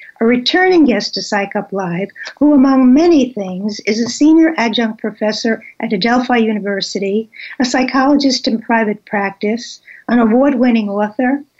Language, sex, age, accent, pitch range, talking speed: English, female, 60-79, American, 220-285 Hz, 140 wpm